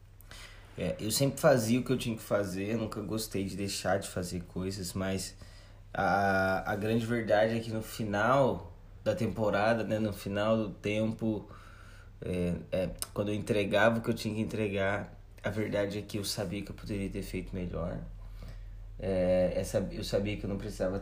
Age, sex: 20-39, male